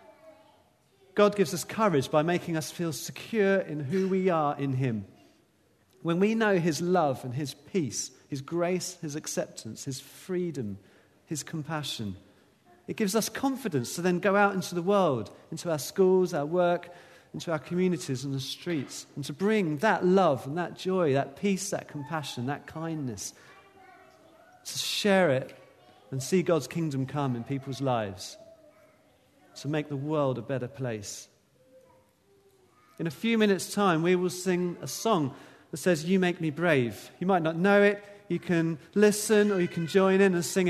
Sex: male